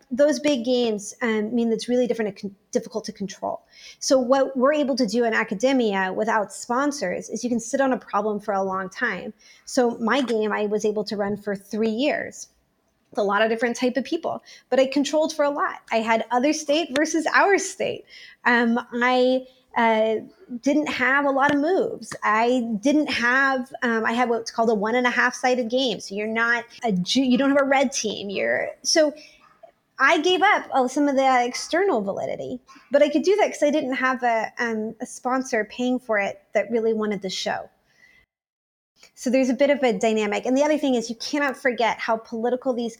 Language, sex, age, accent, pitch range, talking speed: English, female, 20-39, American, 220-280 Hz, 210 wpm